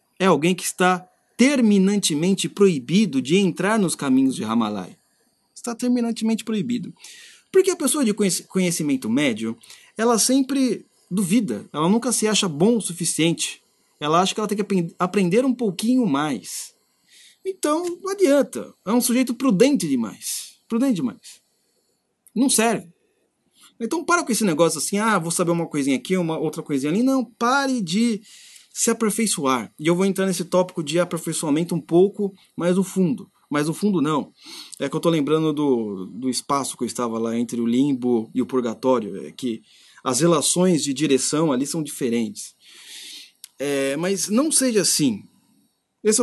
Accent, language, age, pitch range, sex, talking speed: Brazilian, Portuguese, 30-49, 165-240 Hz, male, 160 wpm